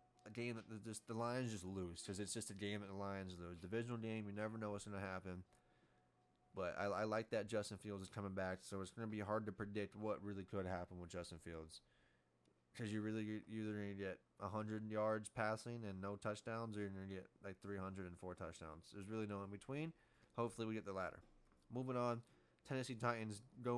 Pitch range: 95-110 Hz